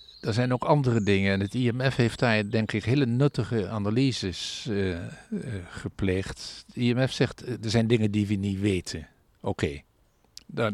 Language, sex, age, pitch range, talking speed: Dutch, male, 50-69, 95-120 Hz, 170 wpm